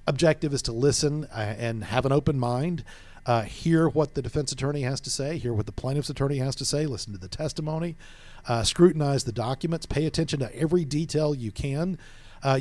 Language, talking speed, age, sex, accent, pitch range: English, 200 wpm, 50-69, male, American, 120-155 Hz